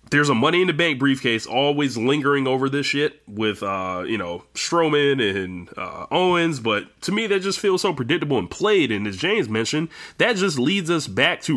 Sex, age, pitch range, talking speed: male, 20-39, 110-150 Hz, 205 wpm